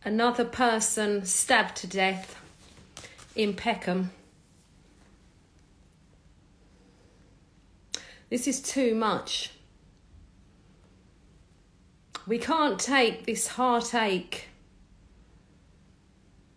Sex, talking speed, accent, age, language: female, 60 wpm, British, 40-59, English